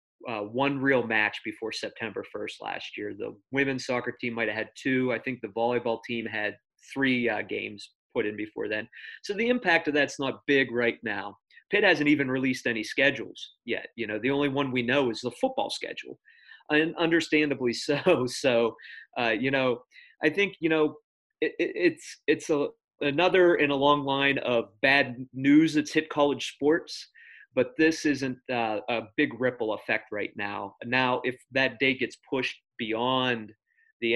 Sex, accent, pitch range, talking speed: male, American, 110-145 Hz, 185 wpm